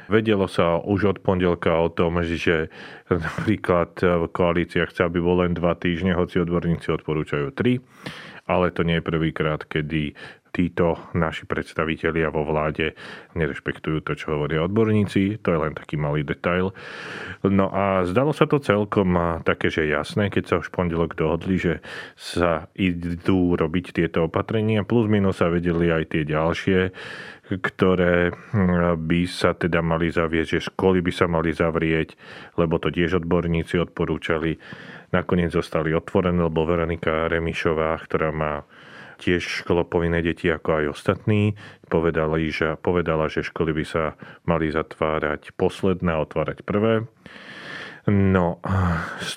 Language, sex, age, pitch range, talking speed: Slovak, male, 30-49, 80-90 Hz, 140 wpm